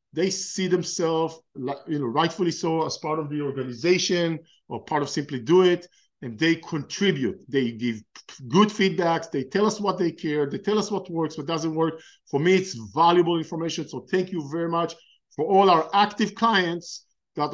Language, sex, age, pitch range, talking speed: English, male, 50-69, 145-180 Hz, 190 wpm